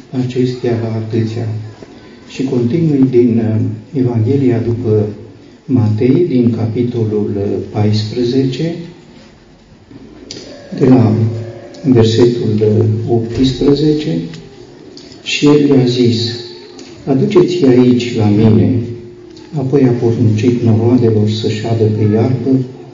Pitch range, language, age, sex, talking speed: 110-125 Hz, Romanian, 50-69, male, 80 wpm